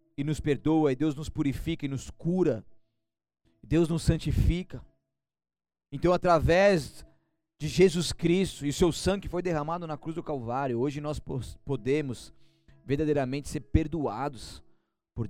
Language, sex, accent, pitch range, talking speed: Portuguese, male, Brazilian, 110-165 Hz, 140 wpm